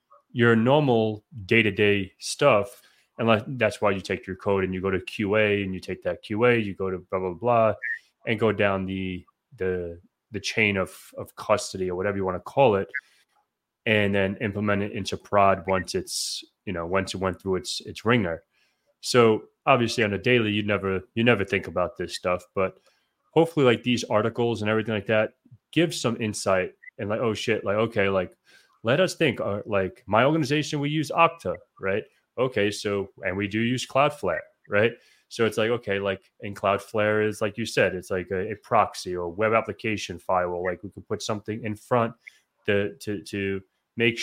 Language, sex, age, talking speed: English, male, 20-39, 195 wpm